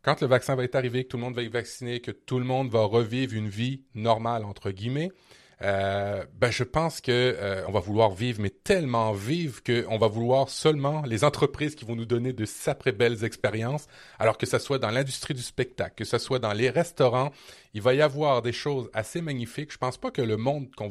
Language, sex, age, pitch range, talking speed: French, male, 30-49, 110-140 Hz, 230 wpm